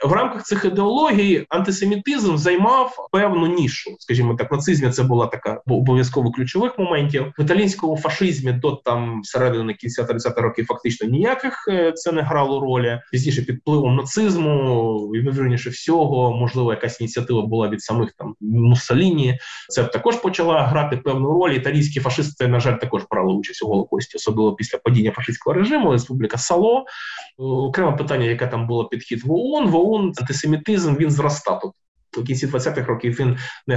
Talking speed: 150 wpm